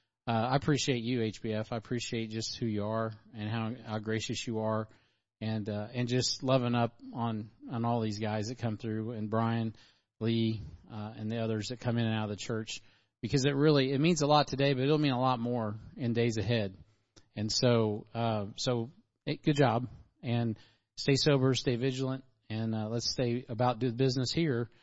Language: English